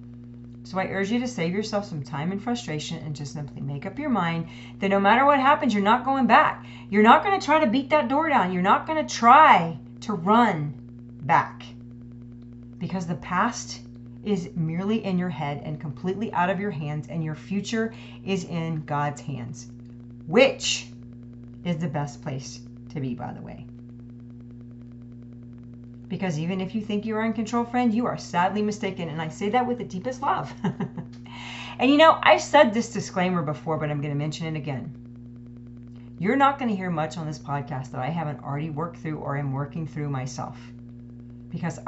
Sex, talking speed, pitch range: female, 195 wpm, 120-195 Hz